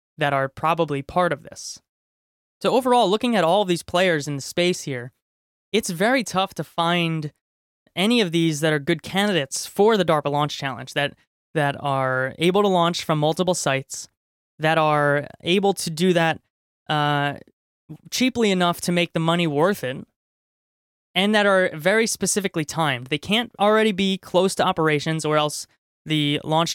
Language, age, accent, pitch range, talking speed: English, 20-39, American, 145-180 Hz, 170 wpm